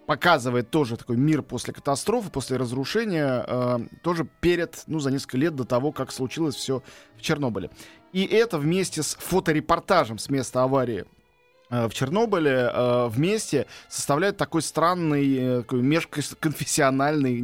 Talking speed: 140 wpm